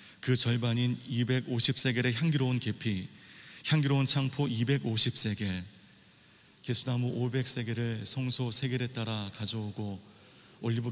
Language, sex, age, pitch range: Korean, male, 40-59, 110-130 Hz